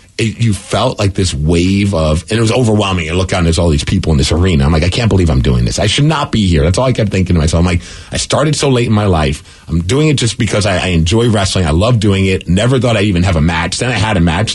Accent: American